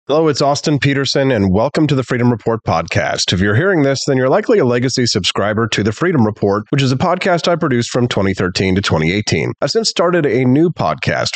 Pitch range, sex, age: 105-140 Hz, male, 30-49